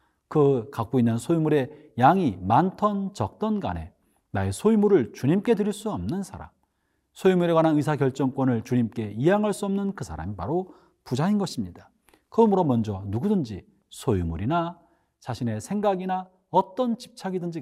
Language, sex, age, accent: Korean, male, 40-59, native